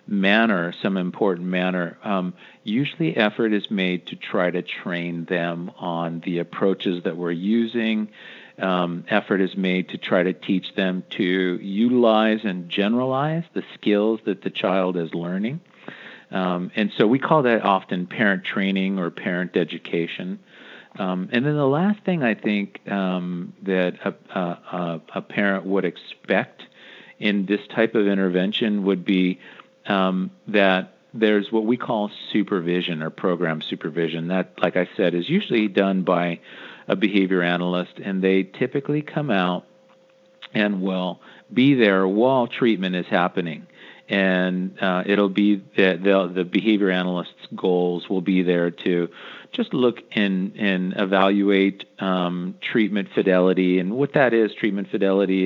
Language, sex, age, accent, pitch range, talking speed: English, male, 50-69, American, 90-105 Hz, 150 wpm